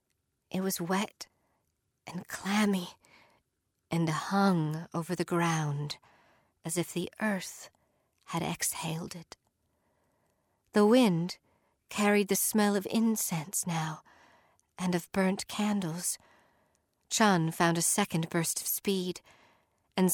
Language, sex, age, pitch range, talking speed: English, female, 50-69, 160-195 Hz, 110 wpm